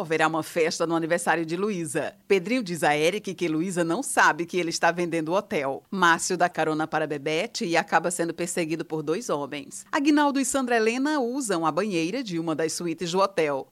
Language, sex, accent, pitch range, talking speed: Portuguese, female, Brazilian, 165-220 Hz, 200 wpm